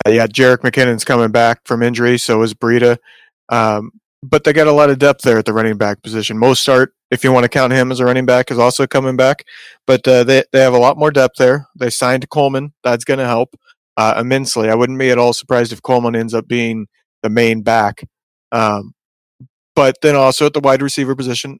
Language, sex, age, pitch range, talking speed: English, male, 30-49, 115-135 Hz, 230 wpm